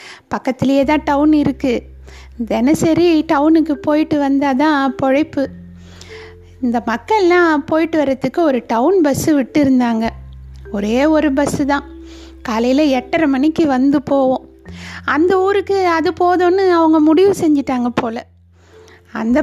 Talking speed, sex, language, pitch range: 110 wpm, female, Tamil, 255-340 Hz